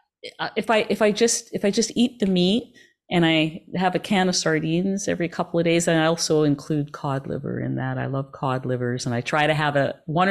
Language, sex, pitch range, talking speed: English, female, 140-180 Hz, 240 wpm